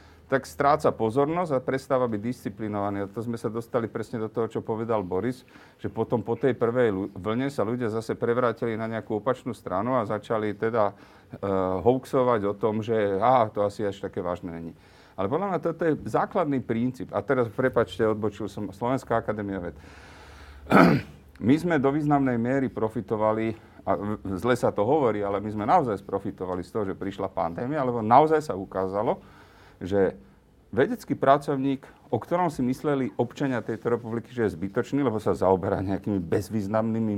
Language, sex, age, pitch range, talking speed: Slovak, male, 40-59, 100-125 Hz, 170 wpm